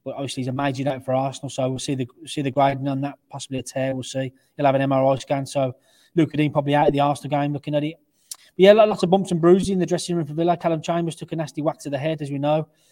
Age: 20-39